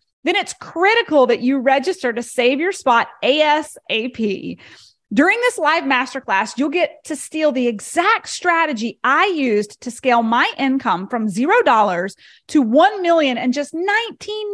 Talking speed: 150 wpm